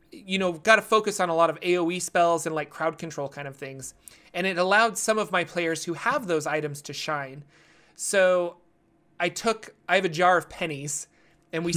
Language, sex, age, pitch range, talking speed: English, male, 30-49, 155-175 Hz, 215 wpm